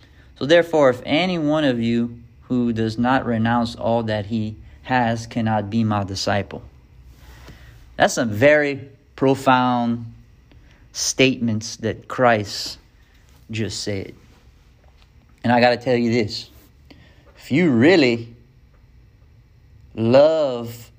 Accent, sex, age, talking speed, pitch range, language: American, male, 40-59, 110 wpm, 105-135 Hz, English